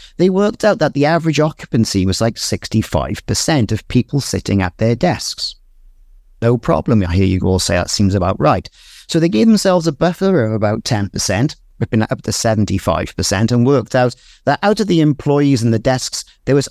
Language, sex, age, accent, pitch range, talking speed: English, male, 50-69, British, 105-140 Hz, 195 wpm